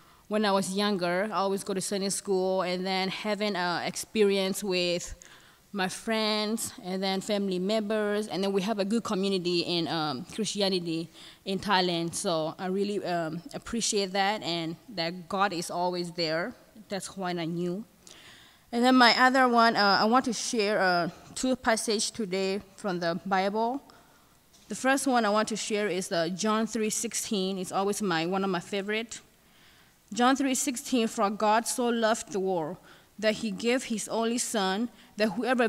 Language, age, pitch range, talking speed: English, 20-39, 185-220 Hz, 175 wpm